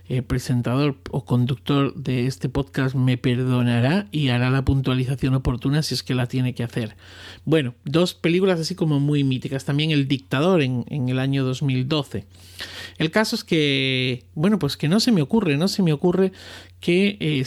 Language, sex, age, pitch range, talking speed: Spanish, male, 40-59, 125-160 Hz, 180 wpm